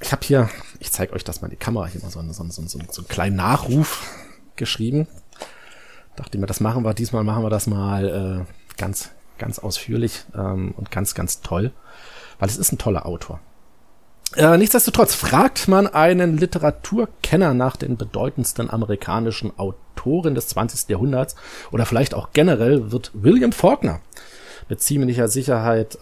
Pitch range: 105-145 Hz